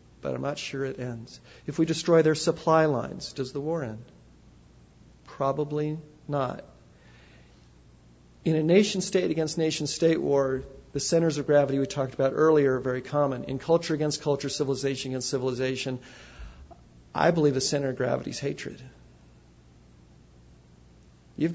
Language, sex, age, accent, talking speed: English, male, 40-59, American, 140 wpm